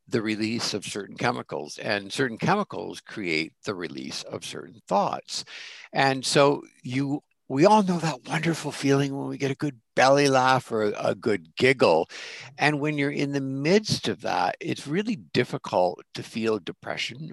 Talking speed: 165 wpm